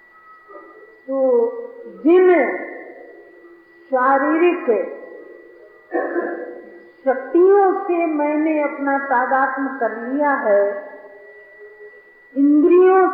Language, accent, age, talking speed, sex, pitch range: Hindi, native, 50-69, 55 wpm, female, 275-345 Hz